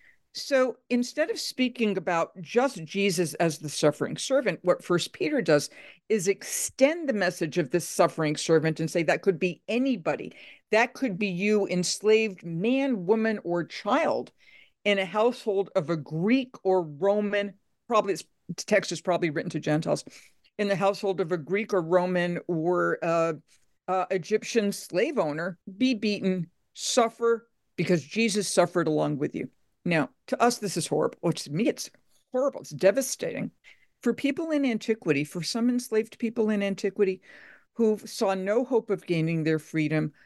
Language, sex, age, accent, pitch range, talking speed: English, female, 50-69, American, 170-225 Hz, 160 wpm